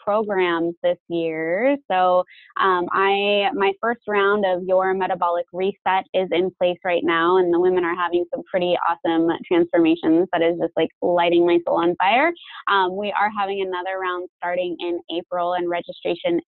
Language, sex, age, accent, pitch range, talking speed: English, female, 20-39, American, 170-190 Hz, 170 wpm